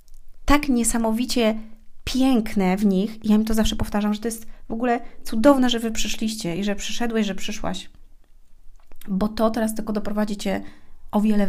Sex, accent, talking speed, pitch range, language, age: female, native, 165 wpm, 185-220 Hz, Polish, 30-49